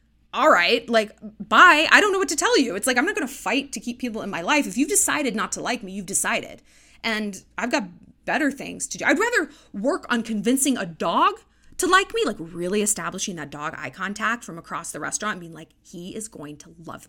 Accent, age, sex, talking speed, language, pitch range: American, 20-39, female, 240 wpm, English, 185-285 Hz